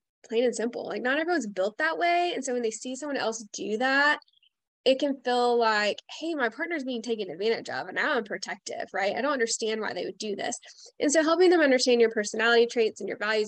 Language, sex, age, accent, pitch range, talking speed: English, female, 10-29, American, 220-285 Hz, 235 wpm